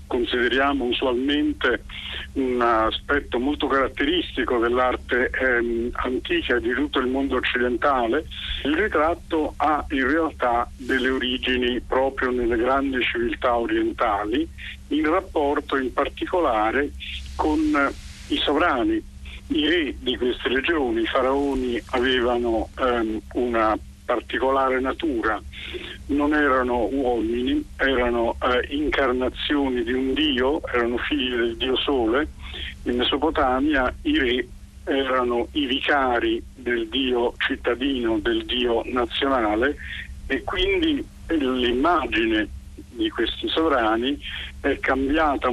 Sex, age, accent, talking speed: male, 50-69, native, 105 wpm